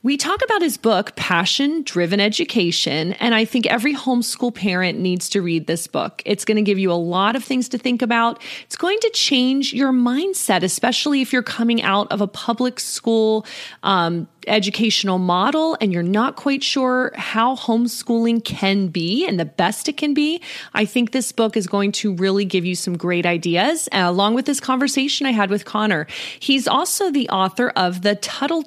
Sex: female